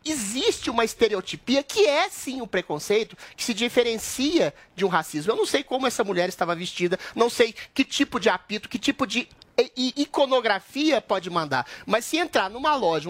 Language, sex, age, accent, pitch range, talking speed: Portuguese, male, 30-49, Brazilian, 195-270 Hz, 180 wpm